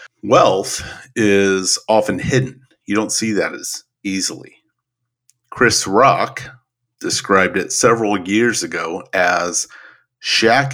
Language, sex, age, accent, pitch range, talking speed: English, male, 40-59, American, 100-125 Hz, 105 wpm